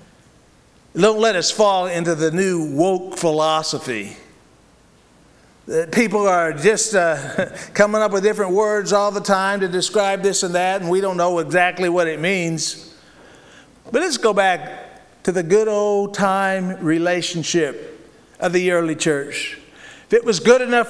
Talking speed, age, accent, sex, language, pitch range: 150 wpm, 50-69, American, male, English, 180-230 Hz